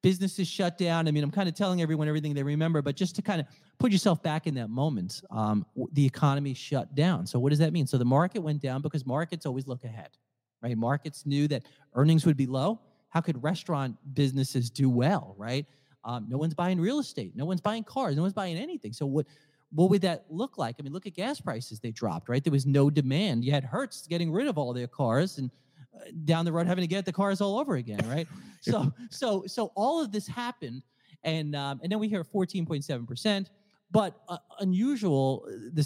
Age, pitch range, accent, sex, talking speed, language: 30-49, 130-180 Hz, American, male, 225 wpm, English